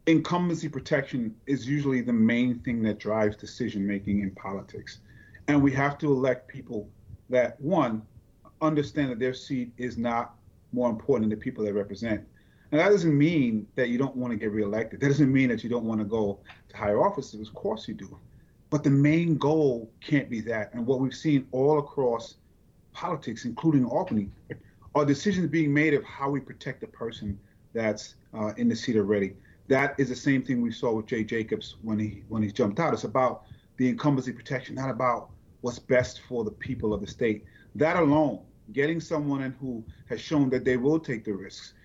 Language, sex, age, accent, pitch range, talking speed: English, male, 30-49, American, 110-140 Hz, 195 wpm